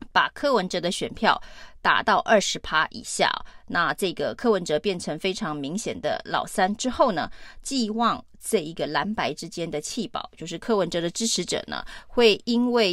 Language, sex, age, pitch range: Chinese, female, 30-49, 175-230 Hz